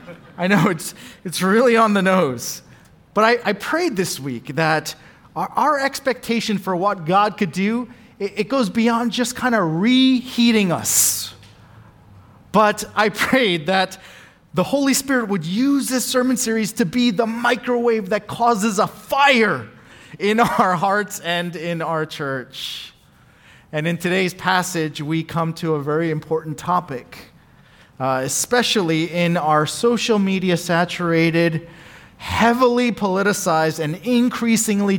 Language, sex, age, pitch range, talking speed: English, male, 30-49, 160-230 Hz, 135 wpm